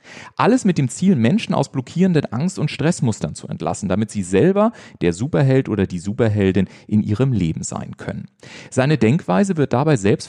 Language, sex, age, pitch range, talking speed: German, male, 40-59, 105-155 Hz, 175 wpm